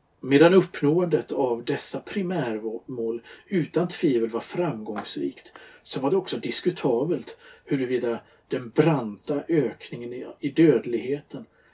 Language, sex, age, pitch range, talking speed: Swedish, male, 50-69, 105-135 Hz, 100 wpm